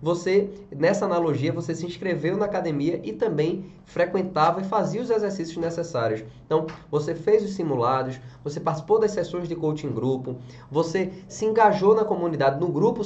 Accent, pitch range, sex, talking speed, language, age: Brazilian, 140-195 Hz, male, 160 wpm, Portuguese, 20-39